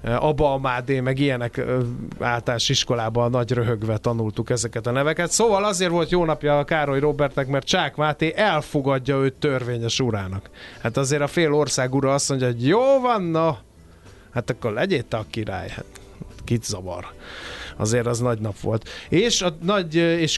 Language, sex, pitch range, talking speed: Hungarian, male, 125-150 Hz, 165 wpm